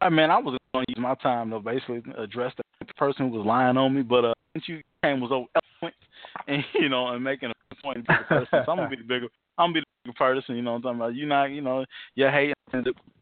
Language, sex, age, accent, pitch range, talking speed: English, male, 20-39, American, 125-150 Hz, 270 wpm